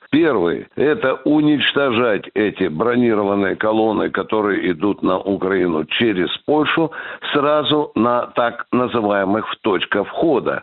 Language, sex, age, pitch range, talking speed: Russian, male, 60-79, 110-140 Hz, 105 wpm